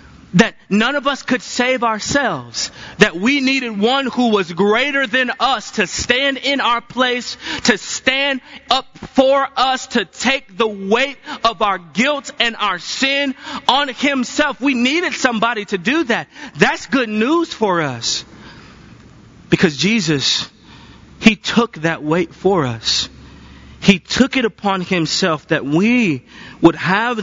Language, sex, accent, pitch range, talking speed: English, male, American, 155-240 Hz, 145 wpm